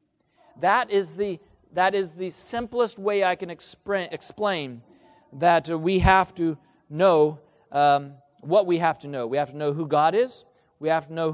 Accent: American